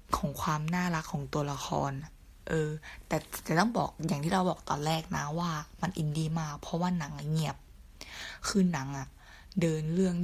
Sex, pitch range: female, 155-185 Hz